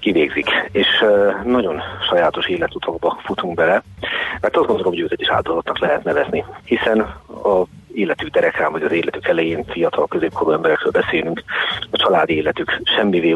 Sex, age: male, 40-59